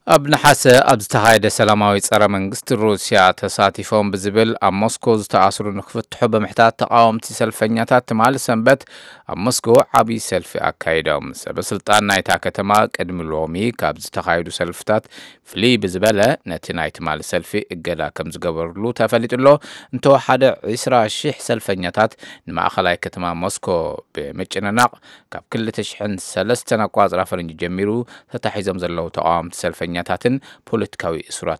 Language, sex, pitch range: English, male, 100-125 Hz